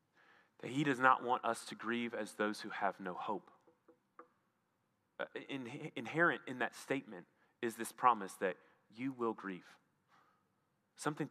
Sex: male